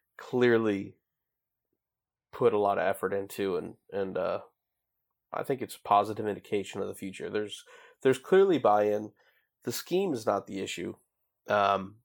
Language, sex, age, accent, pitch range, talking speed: English, male, 20-39, American, 100-120 Hz, 150 wpm